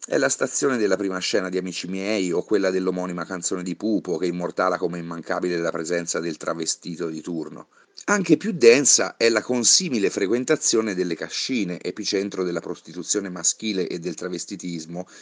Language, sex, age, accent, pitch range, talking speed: Italian, male, 30-49, native, 85-100 Hz, 160 wpm